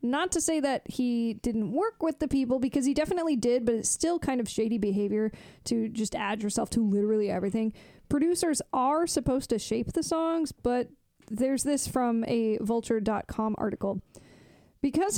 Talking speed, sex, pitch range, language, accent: 170 wpm, female, 220-270 Hz, English, American